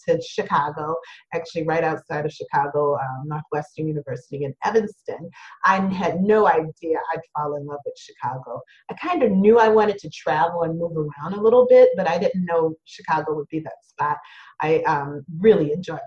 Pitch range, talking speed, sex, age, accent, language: 155-215 Hz, 190 wpm, female, 30-49, American, English